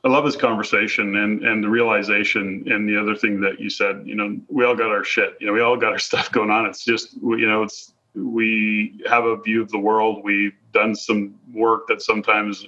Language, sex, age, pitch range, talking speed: English, male, 30-49, 105-120 Hz, 230 wpm